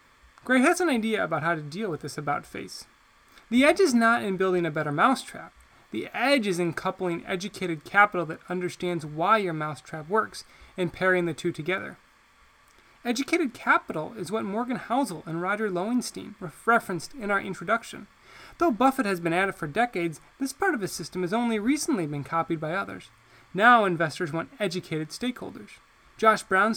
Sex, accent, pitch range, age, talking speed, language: male, American, 170-240 Hz, 20-39, 175 wpm, English